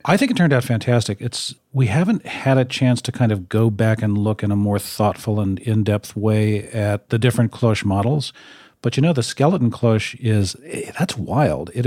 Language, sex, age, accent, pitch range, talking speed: English, male, 40-59, American, 105-125 Hz, 205 wpm